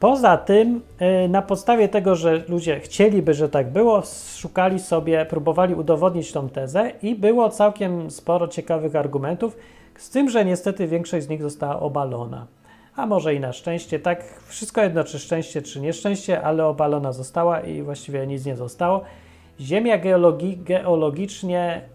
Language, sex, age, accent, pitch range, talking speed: Polish, male, 30-49, native, 145-185 Hz, 150 wpm